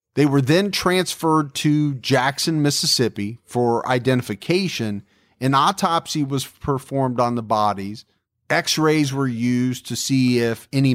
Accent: American